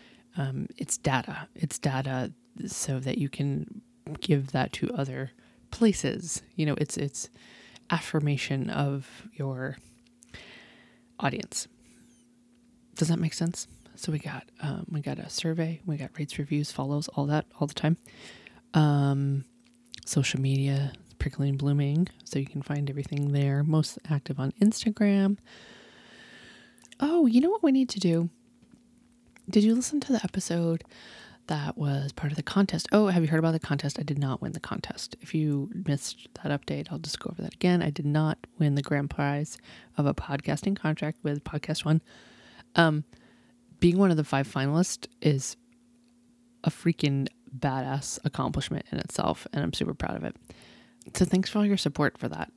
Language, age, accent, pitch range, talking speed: English, 20-39, American, 140-185 Hz, 165 wpm